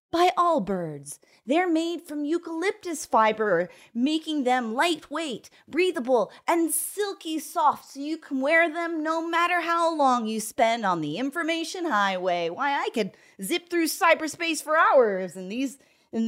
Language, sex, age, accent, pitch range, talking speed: English, female, 30-49, American, 220-330 Hz, 145 wpm